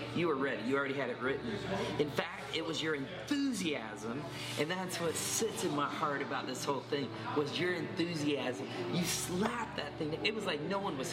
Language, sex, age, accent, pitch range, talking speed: English, male, 30-49, American, 130-155 Hz, 205 wpm